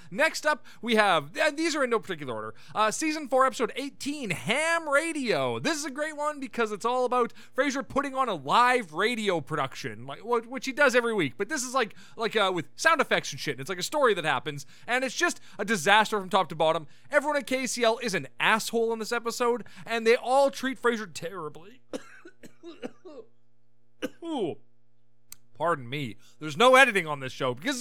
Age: 30-49